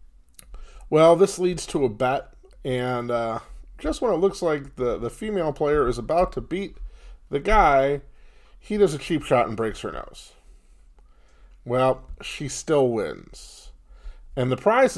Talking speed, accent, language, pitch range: 155 wpm, American, English, 115-150 Hz